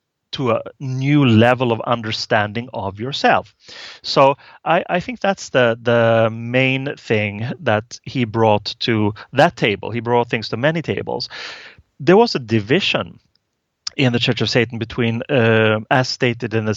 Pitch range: 110-140 Hz